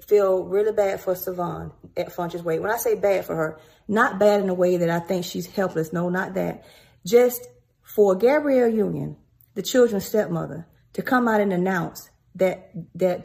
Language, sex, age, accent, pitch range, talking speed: English, female, 40-59, American, 175-210 Hz, 185 wpm